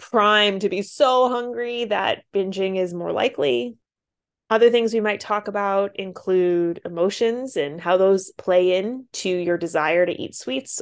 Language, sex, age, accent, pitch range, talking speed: English, female, 20-39, American, 185-265 Hz, 160 wpm